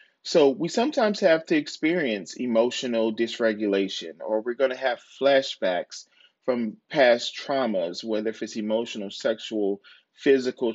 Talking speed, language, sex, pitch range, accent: 130 wpm, English, male, 120-160 Hz, American